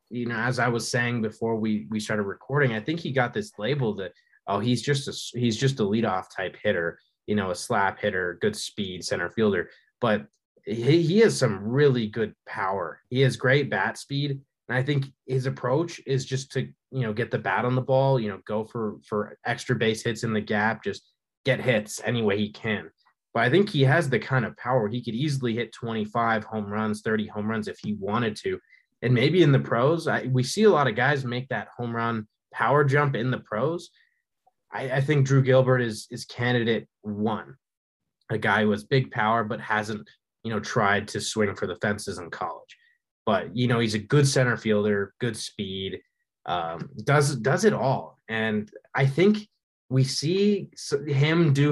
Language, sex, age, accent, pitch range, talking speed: English, male, 20-39, American, 110-140 Hz, 205 wpm